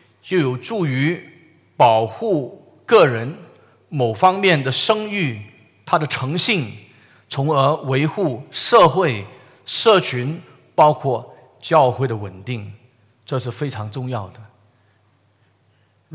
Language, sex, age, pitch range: Chinese, male, 50-69, 125-170 Hz